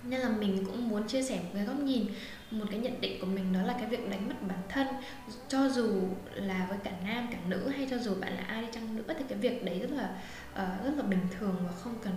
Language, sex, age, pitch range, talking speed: Vietnamese, female, 10-29, 195-255 Hz, 270 wpm